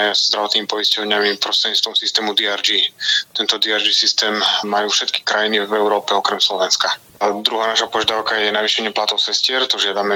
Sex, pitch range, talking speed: male, 100-110 Hz, 155 wpm